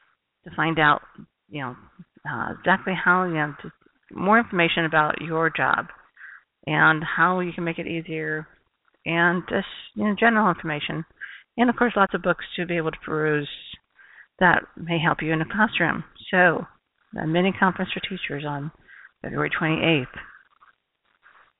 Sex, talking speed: female, 155 wpm